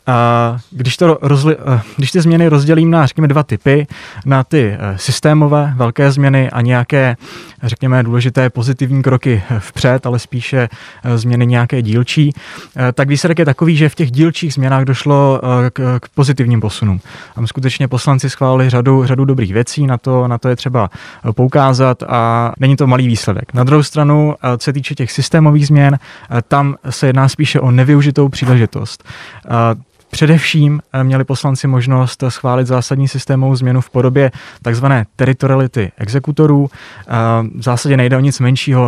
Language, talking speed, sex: Czech, 150 wpm, male